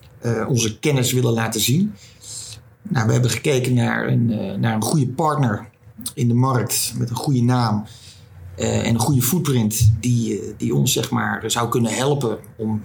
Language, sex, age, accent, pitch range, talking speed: English, male, 40-59, Dutch, 110-130 Hz, 160 wpm